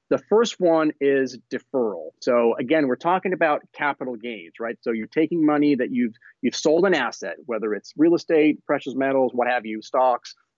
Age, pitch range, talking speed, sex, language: 30-49, 125-165 Hz, 185 wpm, male, English